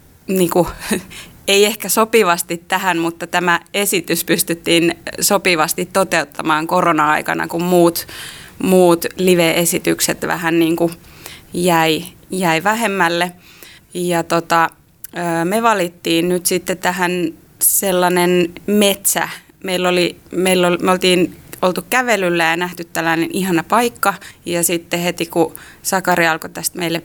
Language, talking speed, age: Finnish, 115 wpm, 20-39